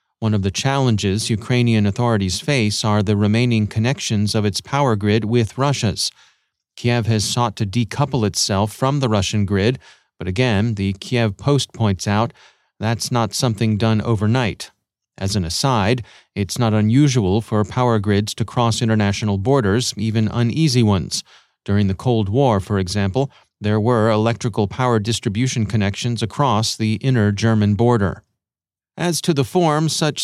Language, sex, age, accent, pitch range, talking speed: English, male, 30-49, American, 105-130 Hz, 155 wpm